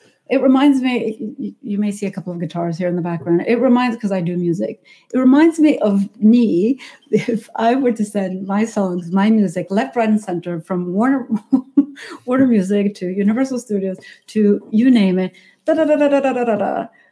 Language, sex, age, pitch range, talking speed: English, female, 60-79, 185-245 Hz, 200 wpm